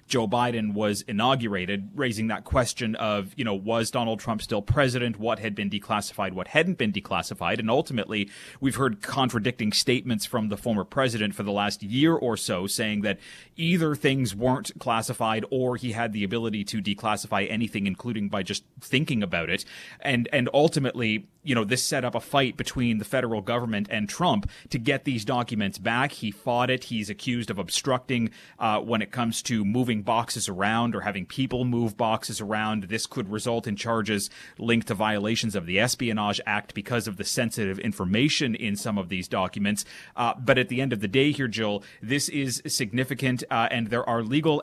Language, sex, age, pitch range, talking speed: English, male, 30-49, 105-125 Hz, 190 wpm